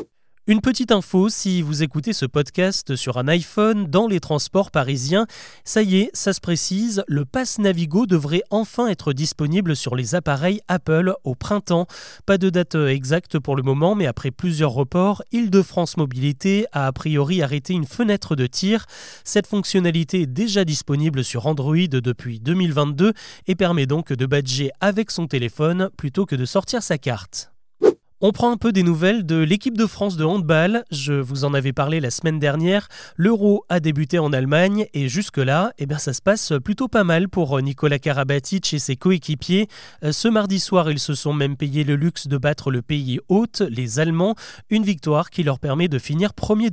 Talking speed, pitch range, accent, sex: 185 wpm, 145-195 Hz, French, male